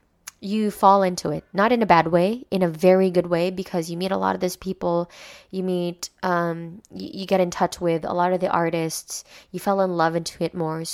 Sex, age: female, 20-39